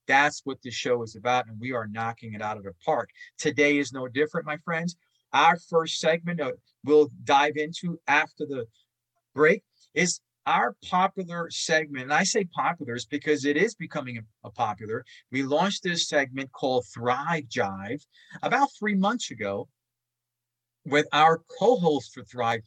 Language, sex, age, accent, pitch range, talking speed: English, male, 40-59, American, 120-155 Hz, 165 wpm